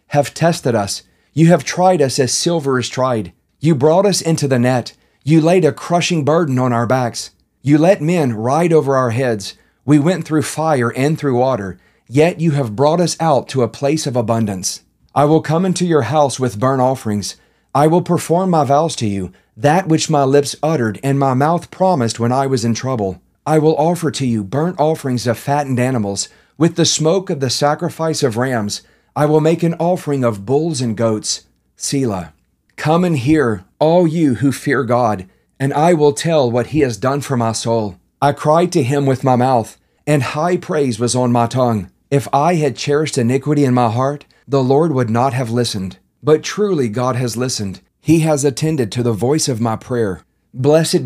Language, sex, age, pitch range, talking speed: English, male, 40-59, 120-155 Hz, 200 wpm